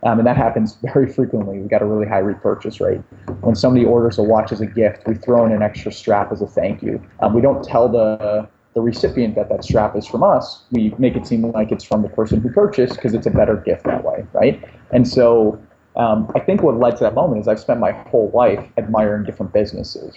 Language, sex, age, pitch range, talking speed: English, male, 30-49, 105-120 Hz, 245 wpm